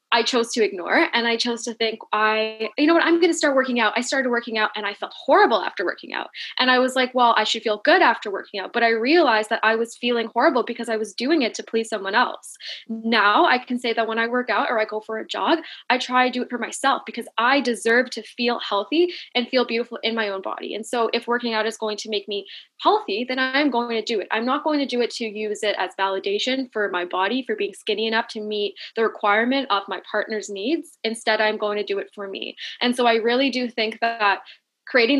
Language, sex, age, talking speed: English, female, 10-29, 260 wpm